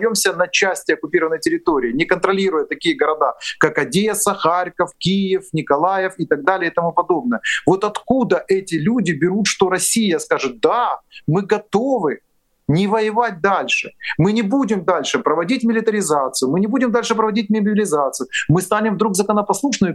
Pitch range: 185-220 Hz